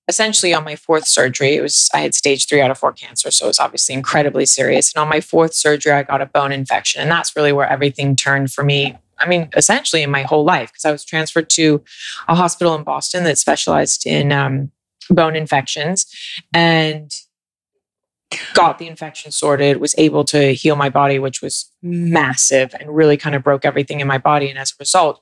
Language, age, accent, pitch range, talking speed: English, 20-39, American, 140-160 Hz, 210 wpm